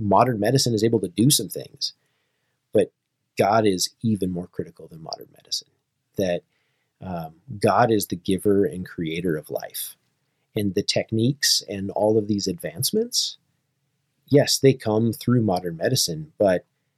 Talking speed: 150 wpm